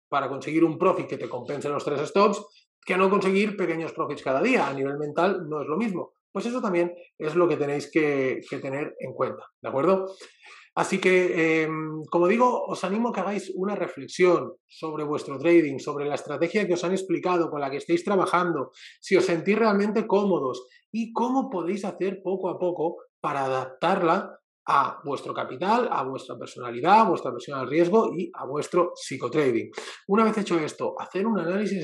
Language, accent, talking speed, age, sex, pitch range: Spanish, Spanish, 190 wpm, 30-49, male, 160-200 Hz